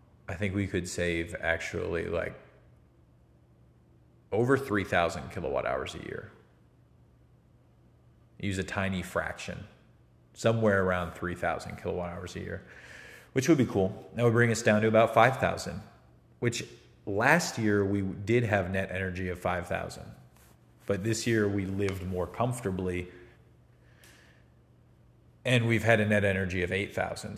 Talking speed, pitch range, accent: 135 wpm, 95-115 Hz, American